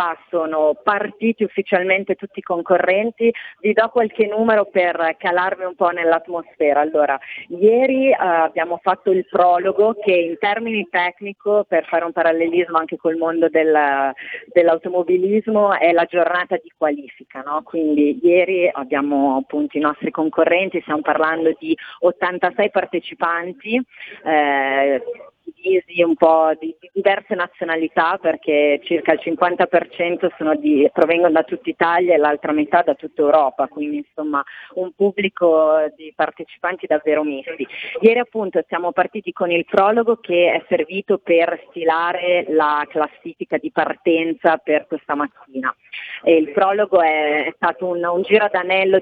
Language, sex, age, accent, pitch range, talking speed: Italian, female, 40-59, native, 160-190 Hz, 135 wpm